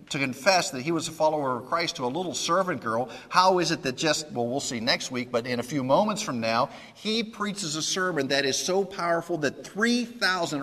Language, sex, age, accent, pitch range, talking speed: English, male, 50-69, American, 120-170 Hz, 230 wpm